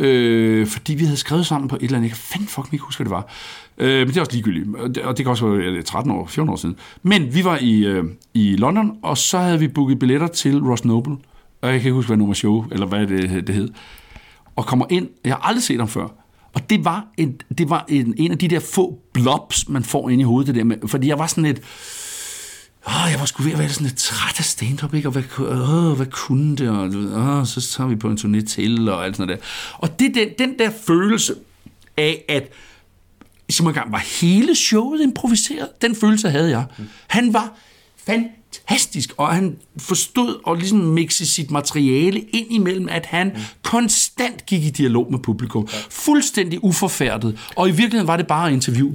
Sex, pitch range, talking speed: male, 120-180 Hz, 220 wpm